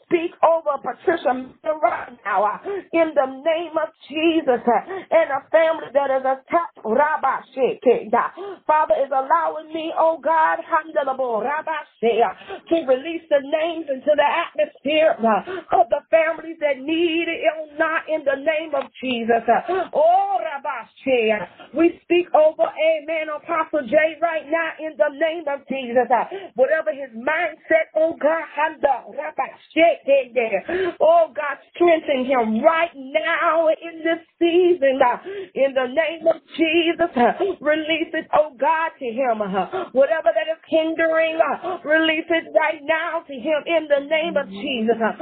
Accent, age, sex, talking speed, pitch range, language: American, 40-59, female, 125 wpm, 280-330 Hz, English